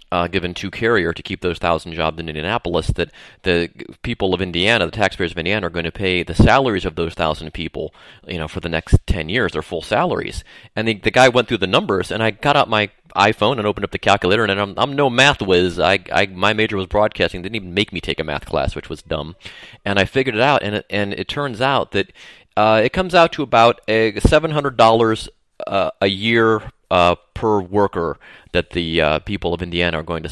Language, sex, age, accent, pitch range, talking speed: English, male, 30-49, American, 90-120 Hz, 240 wpm